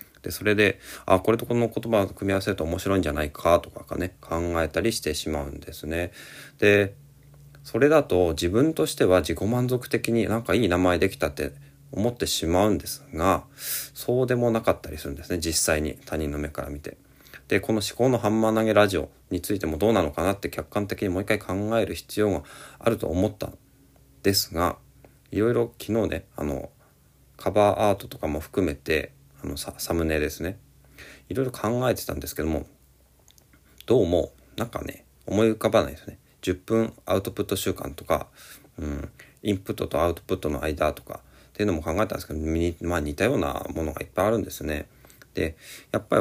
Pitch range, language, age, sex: 80-115 Hz, Japanese, 40-59, male